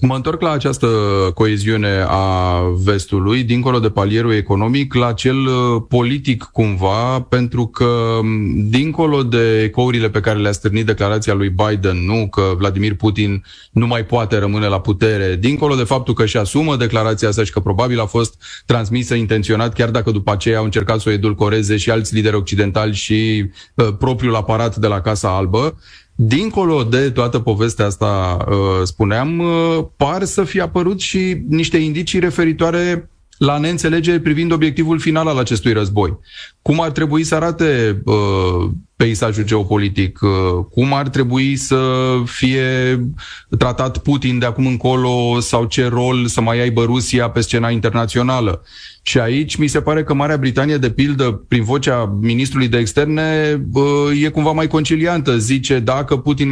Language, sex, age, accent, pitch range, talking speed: Romanian, male, 30-49, native, 110-145 Hz, 150 wpm